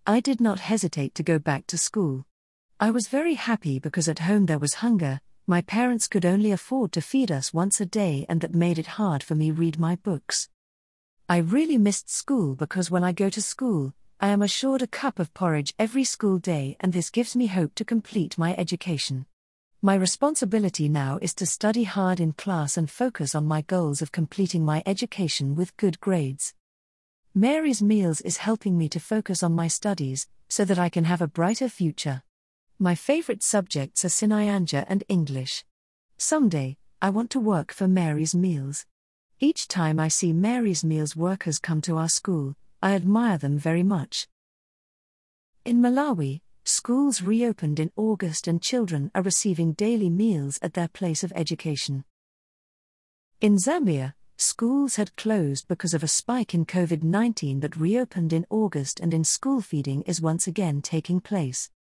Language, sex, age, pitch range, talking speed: English, female, 40-59, 155-210 Hz, 175 wpm